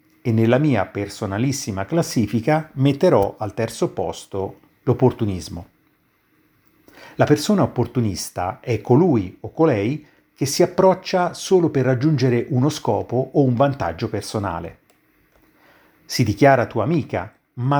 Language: Italian